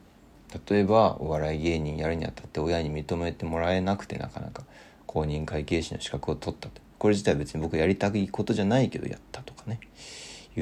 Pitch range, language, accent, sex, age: 80-105 Hz, Japanese, native, male, 40-59